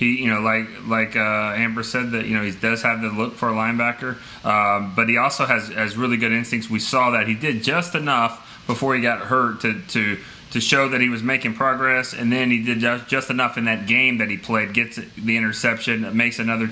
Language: English